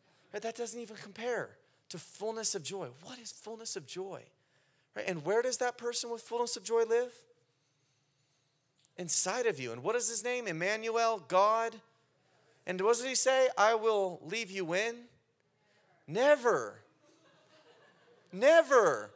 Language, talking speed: English, 140 wpm